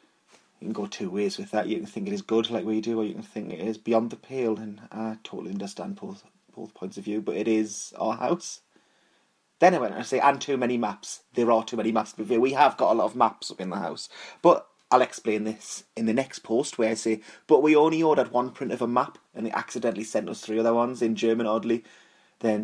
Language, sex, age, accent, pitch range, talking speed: English, male, 30-49, British, 110-135 Hz, 250 wpm